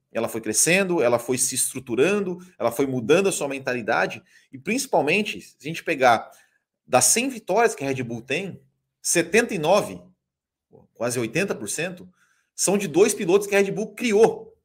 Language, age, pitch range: Portuguese, 30-49, 145-215 Hz